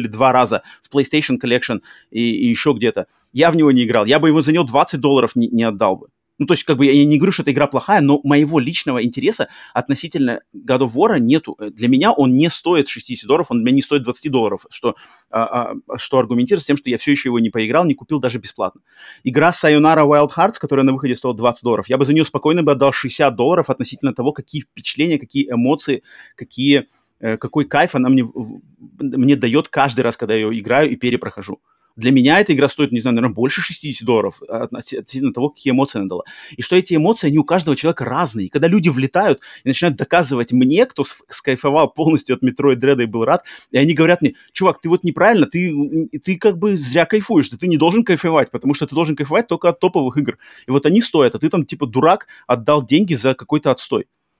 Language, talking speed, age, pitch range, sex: Russian, 220 wpm, 30-49, 125-160 Hz, male